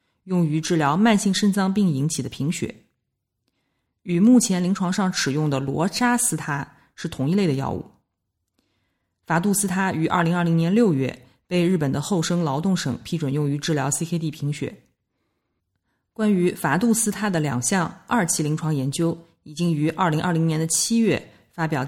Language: Chinese